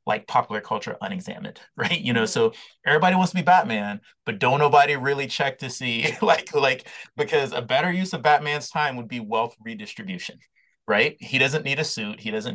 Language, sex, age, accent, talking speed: English, male, 30-49, American, 195 wpm